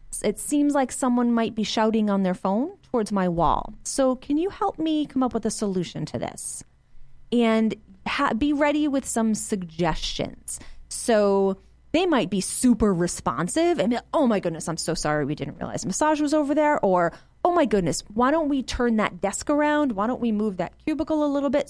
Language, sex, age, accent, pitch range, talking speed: English, female, 30-49, American, 185-270 Hz, 200 wpm